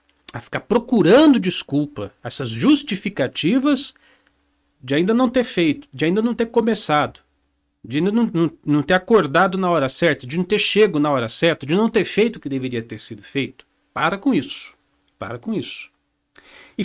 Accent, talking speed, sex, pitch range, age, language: Brazilian, 175 wpm, male, 115-185 Hz, 50-69, Portuguese